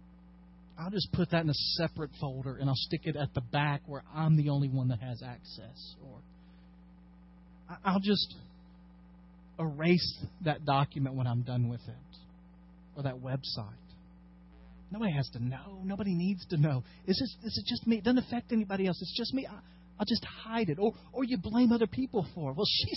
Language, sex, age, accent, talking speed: English, male, 40-59, American, 195 wpm